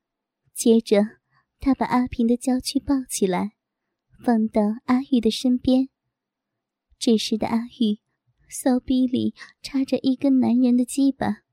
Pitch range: 230-270 Hz